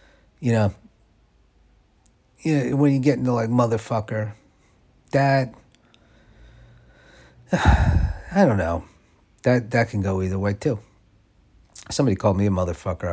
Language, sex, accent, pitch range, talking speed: English, male, American, 90-115 Hz, 130 wpm